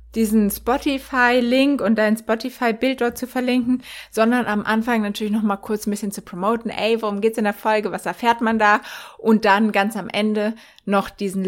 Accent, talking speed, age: German, 195 wpm, 20-39